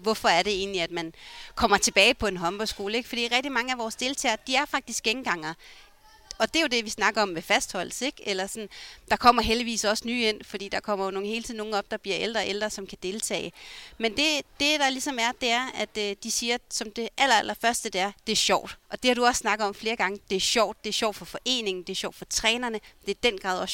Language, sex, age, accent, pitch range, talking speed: Danish, female, 30-49, native, 205-245 Hz, 260 wpm